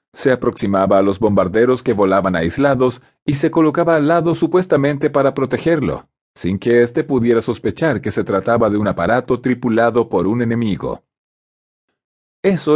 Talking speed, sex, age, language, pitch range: 150 wpm, male, 40-59, Spanish, 115-150 Hz